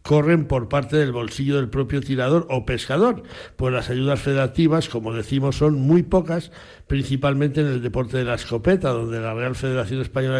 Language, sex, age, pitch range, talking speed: Spanish, male, 60-79, 125-155 Hz, 180 wpm